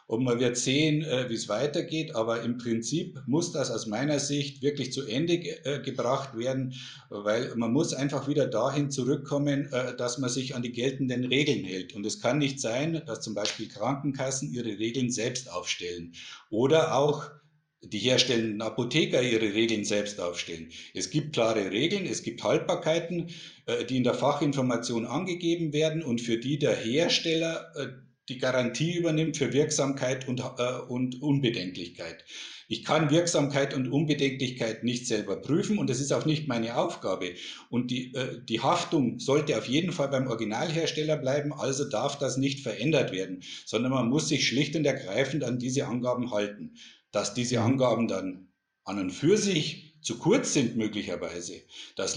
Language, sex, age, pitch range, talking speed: German, male, 50-69, 120-150 Hz, 160 wpm